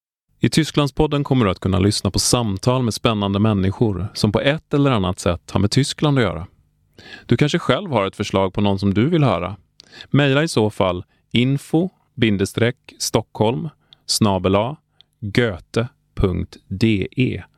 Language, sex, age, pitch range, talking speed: Swedish, male, 30-49, 95-125 Hz, 135 wpm